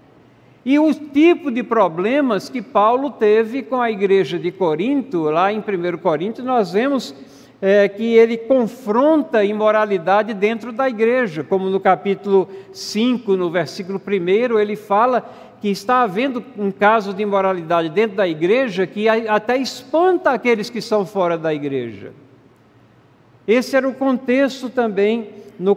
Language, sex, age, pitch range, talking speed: Portuguese, male, 60-79, 195-245 Hz, 140 wpm